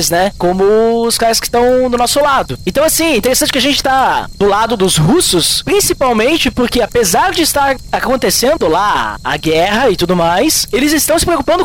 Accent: Brazilian